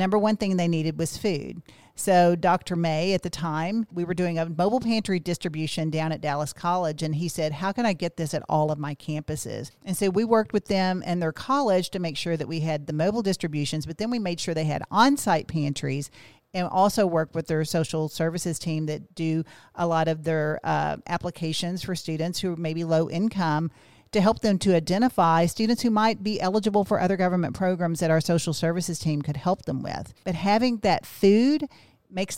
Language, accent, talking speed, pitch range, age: English, American, 210 wpm, 160-195 Hz, 40-59